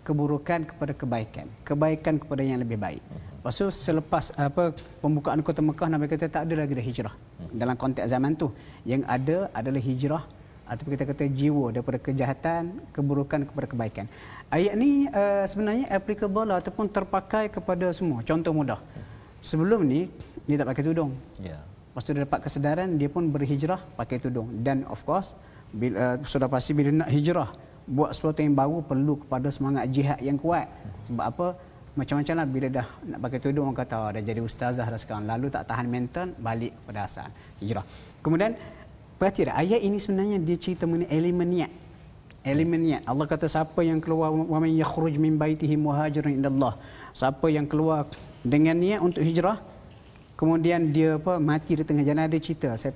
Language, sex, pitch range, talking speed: Malayalam, male, 130-165 Hz, 165 wpm